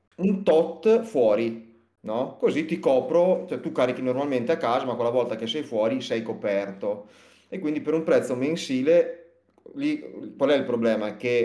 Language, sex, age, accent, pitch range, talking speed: Italian, male, 30-49, native, 110-150 Hz, 170 wpm